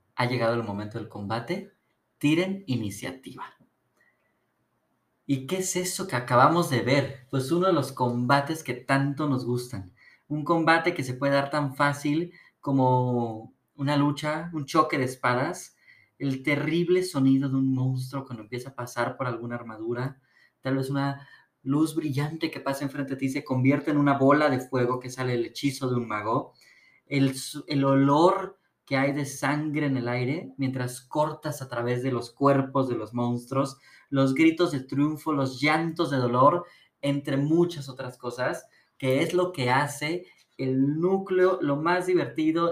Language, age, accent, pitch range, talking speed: Spanish, 20-39, Mexican, 130-155 Hz, 165 wpm